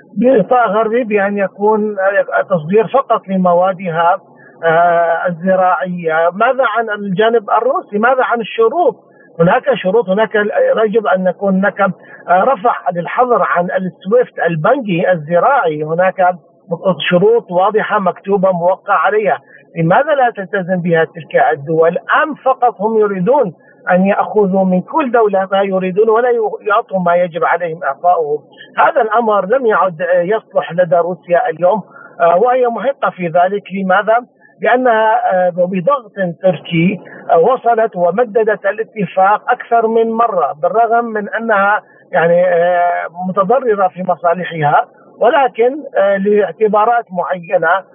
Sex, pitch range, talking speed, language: male, 180-230 Hz, 115 wpm, Arabic